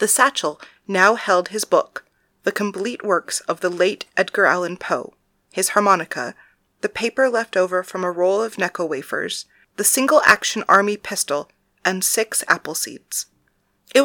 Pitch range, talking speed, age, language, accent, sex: 180-230 Hz, 155 wpm, 30-49, English, American, female